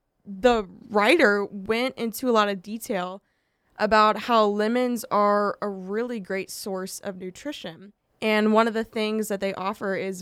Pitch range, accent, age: 200-235 Hz, American, 20-39